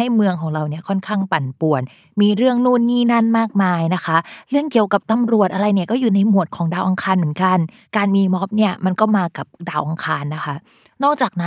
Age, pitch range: 20-39, 170-220 Hz